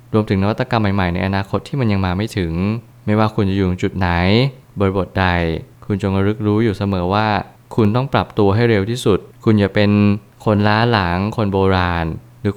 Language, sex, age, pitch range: Thai, male, 20-39, 95-115 Hz